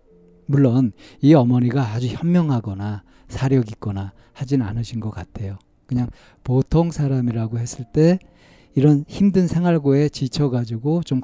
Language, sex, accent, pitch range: Korean, male, native, 115-145 Hz